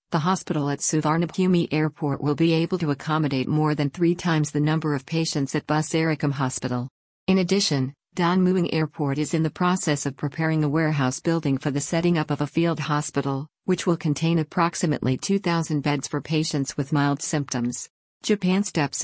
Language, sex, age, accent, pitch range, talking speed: English, female, 50-69, American, 145-165 Hz, 175 wpm